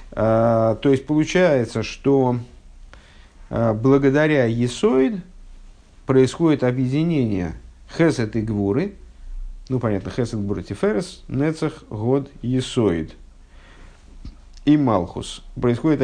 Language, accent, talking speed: Russian, native, 85 wpm